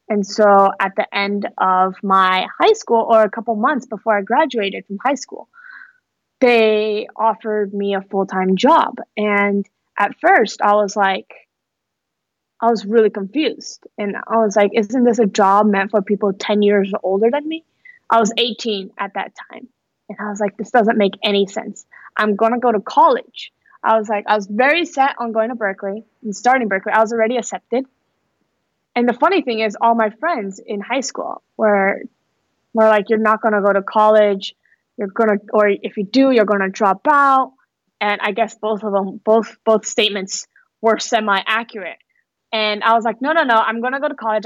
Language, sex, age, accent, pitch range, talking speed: English, female, 20-39, American, 205-235 Hz, 200 wpm